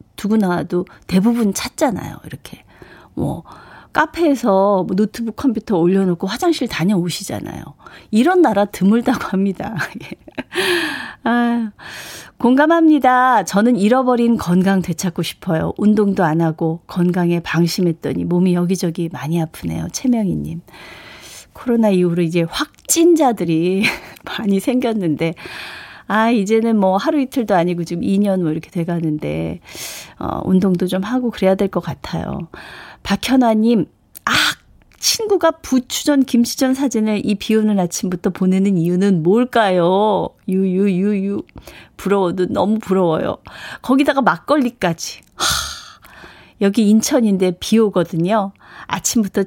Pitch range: 180-240 Hz